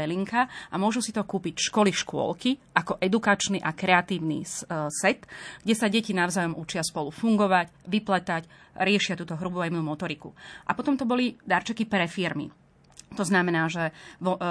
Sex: female